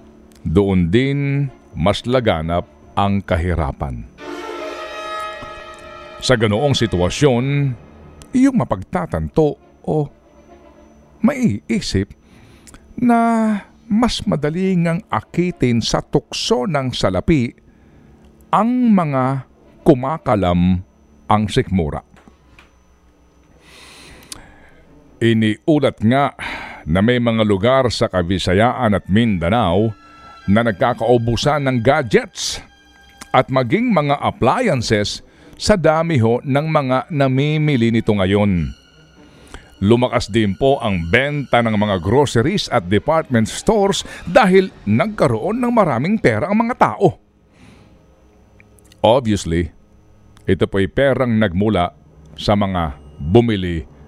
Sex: male